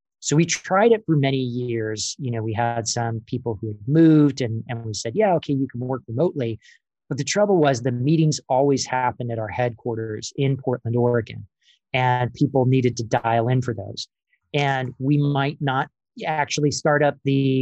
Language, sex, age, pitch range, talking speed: English, male, 30-49, 120-145 Hz, 190 wpm